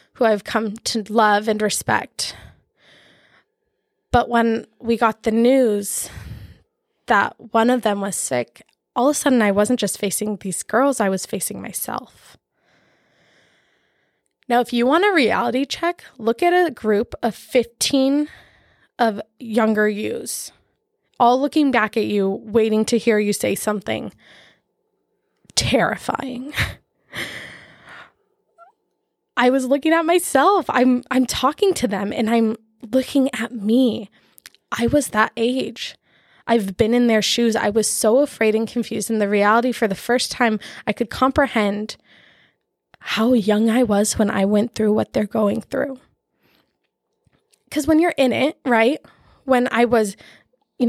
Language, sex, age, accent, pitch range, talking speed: English, female, 20-39, American, 215-265 Hz, 145 wpm